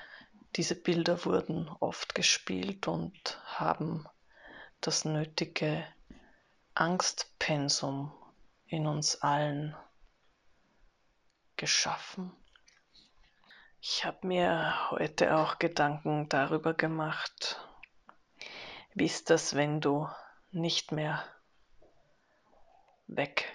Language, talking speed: German, 75 wpm